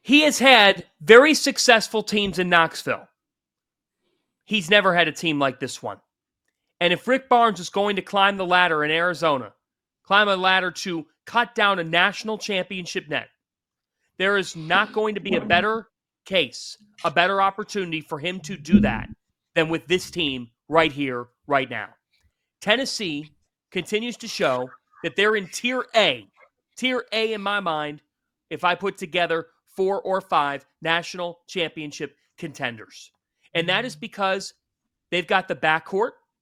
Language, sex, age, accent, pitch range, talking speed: English, male, 30-49, American, 165-210 Hz, 155 wpm